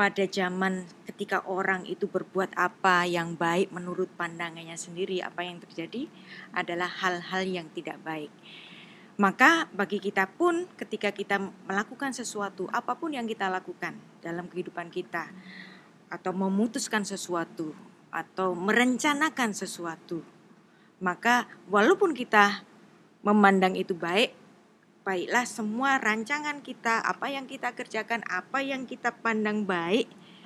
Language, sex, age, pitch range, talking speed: Indonesian, female, 20-39, 180-210 Hz, 120 wpm